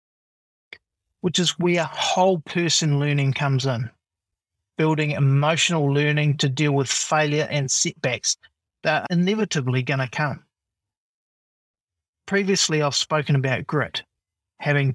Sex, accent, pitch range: male, Australian, 130-165 Hz